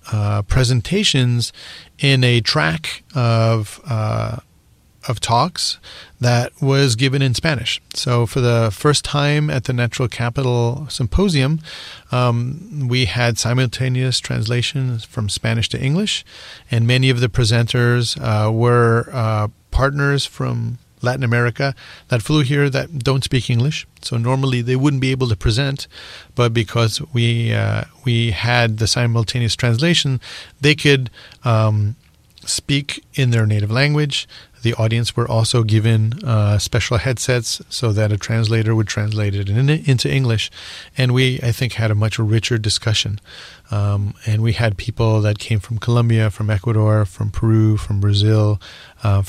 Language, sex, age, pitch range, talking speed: English, male, 40-59, 110-130 Hz, 145 wpm